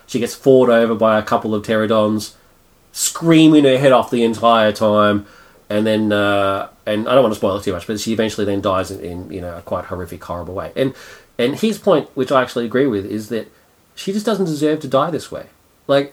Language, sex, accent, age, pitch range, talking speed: English, male, Australian, 30-49, 105-145 Hz, 240 wpm